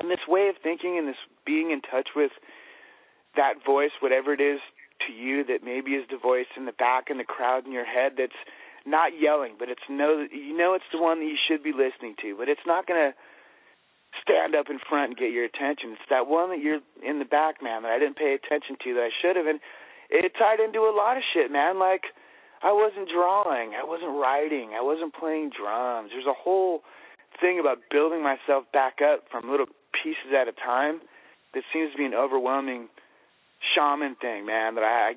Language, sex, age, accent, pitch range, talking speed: English, male, 30-49, American, 130-175 Hz, 220 wpm